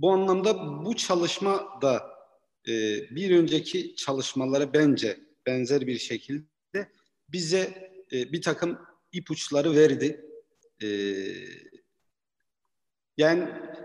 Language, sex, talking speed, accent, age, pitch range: Turkish, male, 80 wpm, native, 50-69, 140-190 Hz